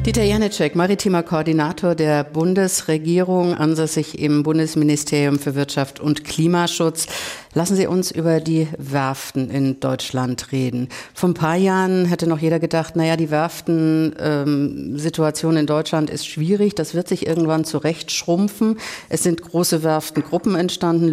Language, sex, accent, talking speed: German, female, German, 140 wpm